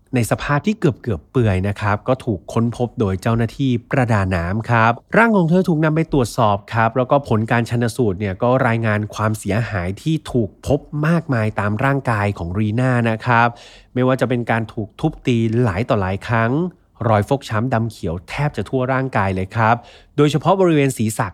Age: 30-49